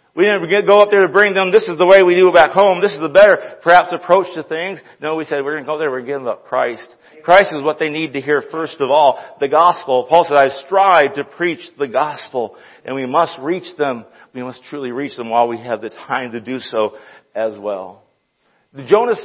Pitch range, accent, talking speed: 165-225 Hz, American, 245 wpm